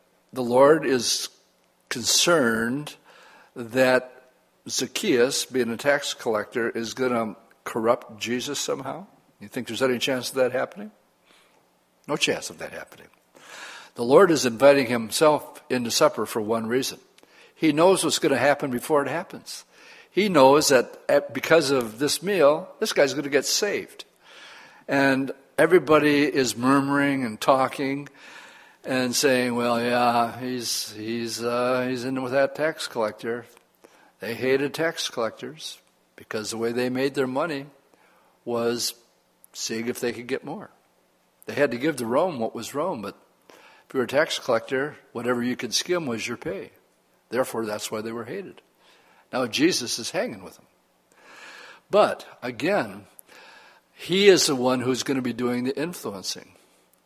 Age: 60-79